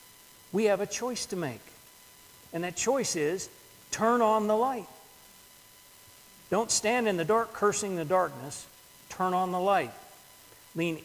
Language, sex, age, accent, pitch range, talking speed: English, male, 50-69, American, 145-205 Hz, 145 wpm